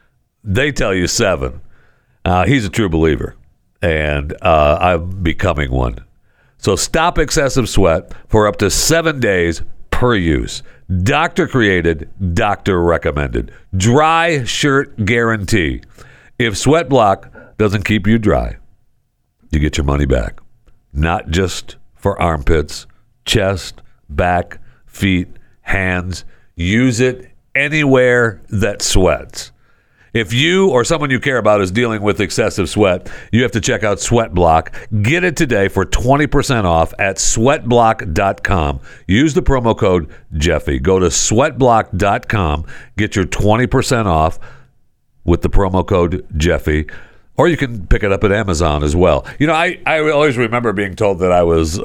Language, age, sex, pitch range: English, 60-79, male, 85-120 Hz